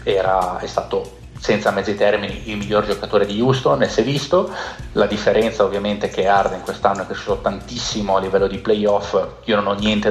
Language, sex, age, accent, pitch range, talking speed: Italian, male, 30-49, native, 95-105 Hz, 195 wpm